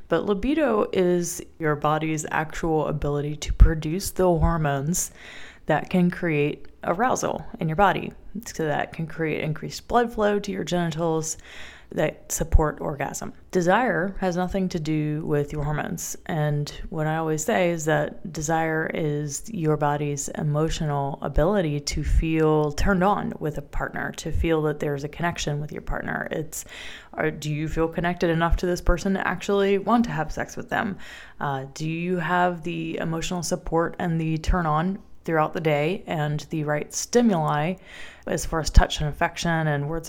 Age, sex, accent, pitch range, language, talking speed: 20-39, female, American, 150-185 Hz, English, 170 wpm